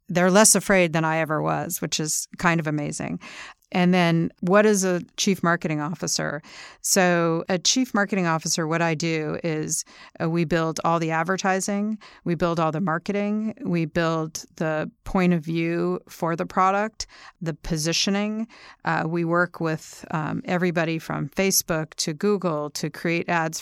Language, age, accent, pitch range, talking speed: English, 40-59, American, 160-185 Hz, 160 wpm